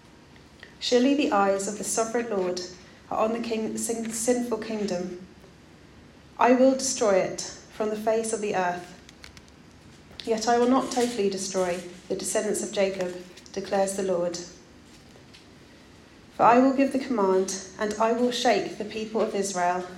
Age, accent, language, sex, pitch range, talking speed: 30-49, British, English, female, 185-220 Hz, 145 wpm